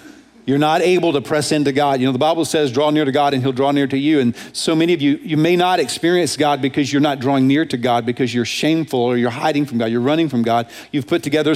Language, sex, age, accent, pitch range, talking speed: English, male, 40-59, American, 130-155 Hz, 280 wpm